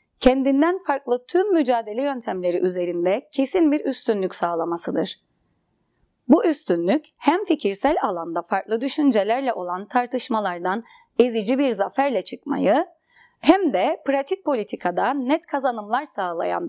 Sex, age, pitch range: female, 30-49, 215-305 Hz